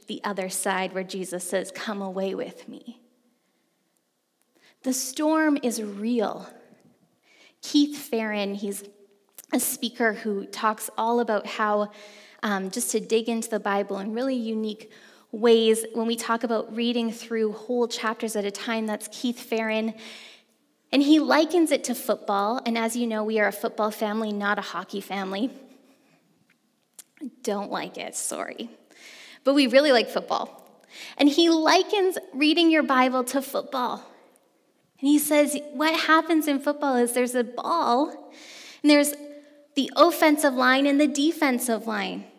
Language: English